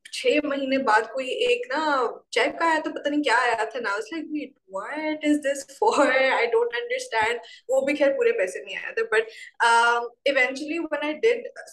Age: 20-39